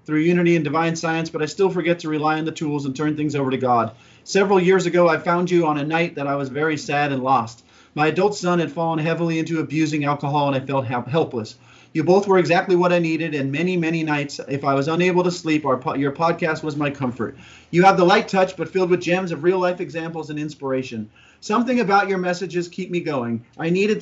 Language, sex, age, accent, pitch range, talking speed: English, male, 40-59, American, 145-180 Hz, 235 wpm